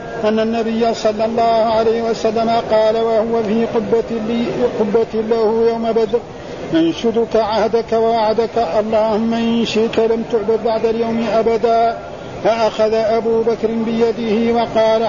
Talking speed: 110 wpm